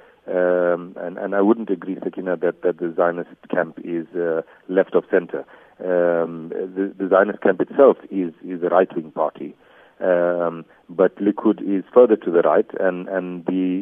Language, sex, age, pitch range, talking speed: English, male, 50-69, 90-110 Hz, 175 wpm